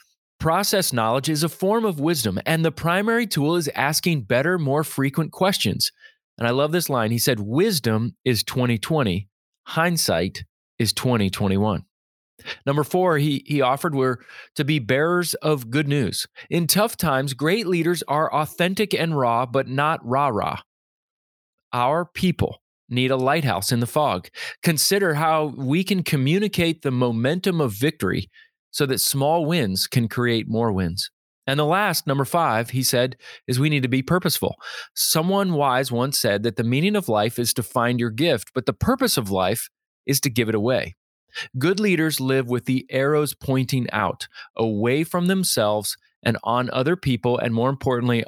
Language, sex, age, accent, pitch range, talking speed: English, male, 30-49, American, 115-160 Hz, 170 wpm